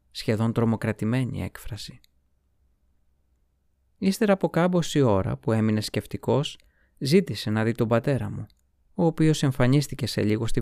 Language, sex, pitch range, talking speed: Greek, male, 100-140 Hz, 125 wpm